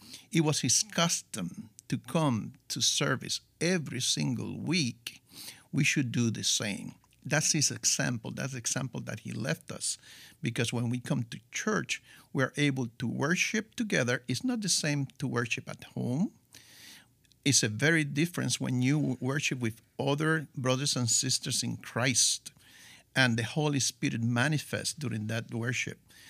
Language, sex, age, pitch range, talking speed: English, male, 50-69, 120-150 Hz, 155 wpm